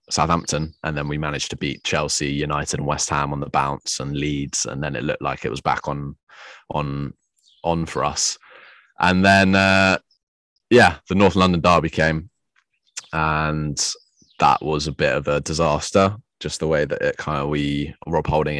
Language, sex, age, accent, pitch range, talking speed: English, male, 20-39, British, 75-90 Hz, 185 wpm